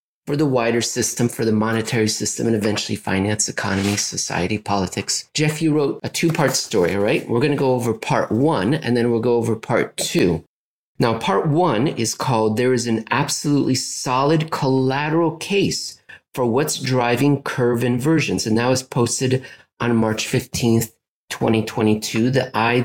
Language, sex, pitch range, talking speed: English, male, 110-145 Hz, 160 wpm